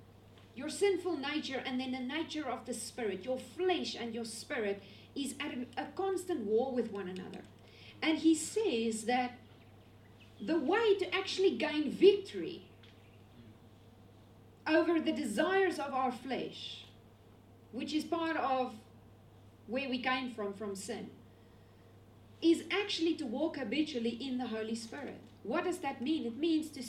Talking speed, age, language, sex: 145 wpm, 40-59, English, female